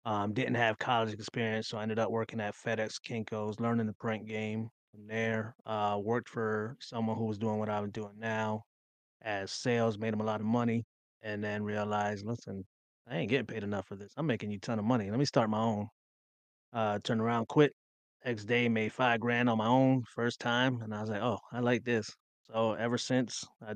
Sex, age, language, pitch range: male, 20-39, English, 105-120 Hz